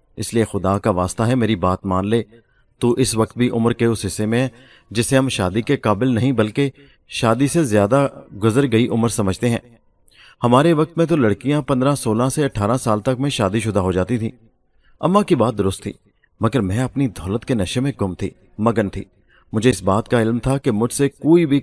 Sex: male